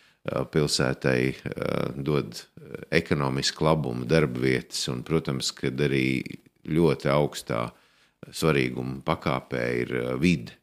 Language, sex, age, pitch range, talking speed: English, male, 50-69, 65-80 Hz, 85 wpm